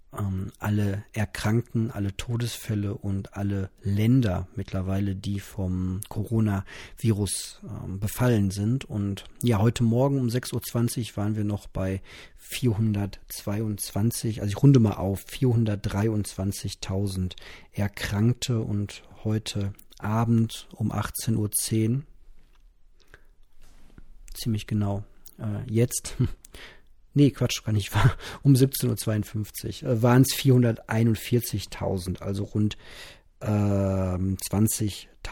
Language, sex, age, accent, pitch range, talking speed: German, male, 40-59, German, 100-115 Hz, 95 wpm